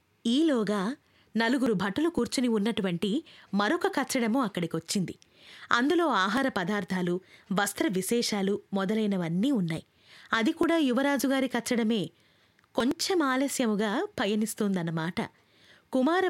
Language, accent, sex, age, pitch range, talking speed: Telugu, native, female, 20-39, 195-250 Hz, 90 wpm